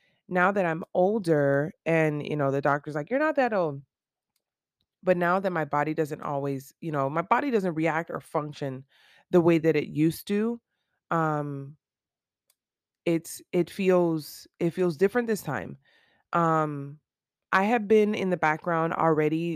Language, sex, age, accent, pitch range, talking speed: English, female, 20-39, American, 145-185 Hz, 160 wpm